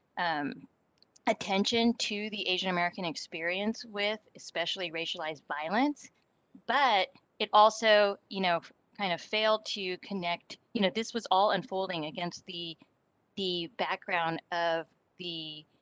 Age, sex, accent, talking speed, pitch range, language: 30-49, female, American, 125 wpm, 170-215 Hz, English